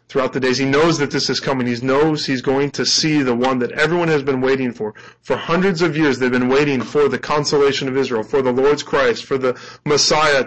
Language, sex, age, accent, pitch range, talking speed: English, male, 20-39, American, 120-135 Hz, 240 wpm